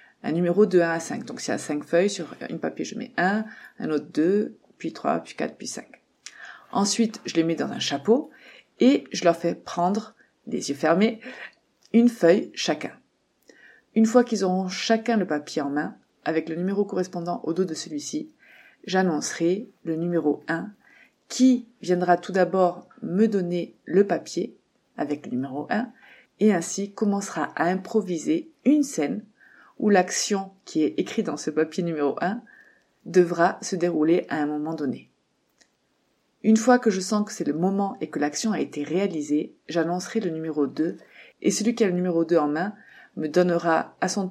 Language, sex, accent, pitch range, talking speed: French, female, French, 170-225 Hz, 180 wpm